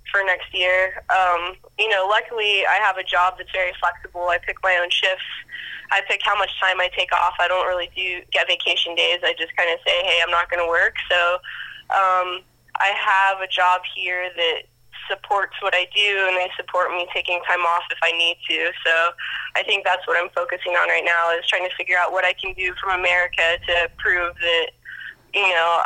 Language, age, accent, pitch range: English, 20-39, American, 175-190 Hz